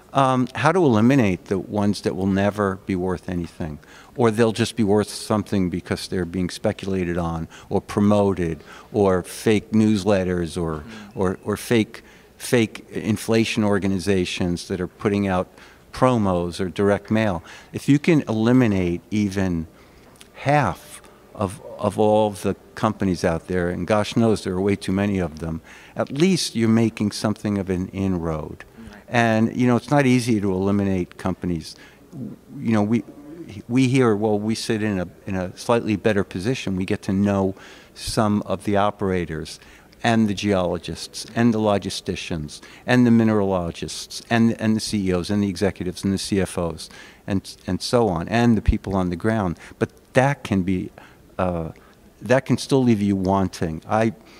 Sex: male